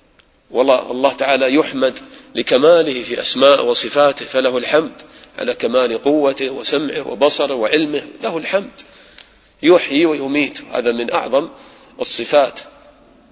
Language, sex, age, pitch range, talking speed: English, male, 40-59, 120-145 Hz, 105 wpm